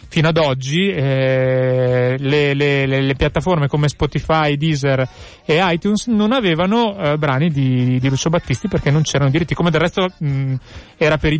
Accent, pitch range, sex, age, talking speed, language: native, 135-165 Hz, male, 30-49, 165 wpm, Italian